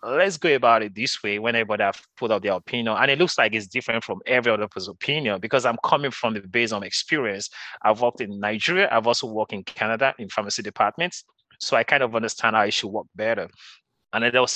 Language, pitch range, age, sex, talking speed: English, 110-135 Hz, 30-49, male, 240 wpm